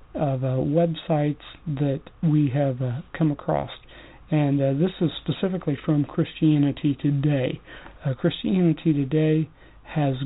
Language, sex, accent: English, male, American